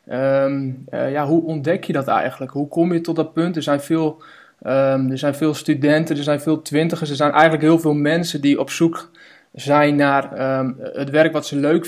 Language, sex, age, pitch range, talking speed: Dutch, male, 20-39, 140-160 Hz, 190 wpm